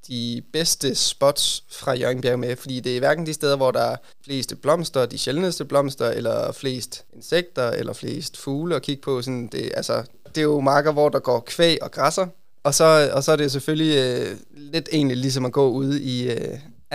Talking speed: 205 wpm